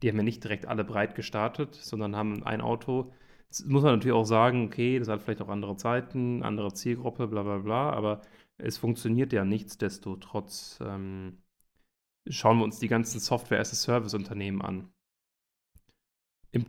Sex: male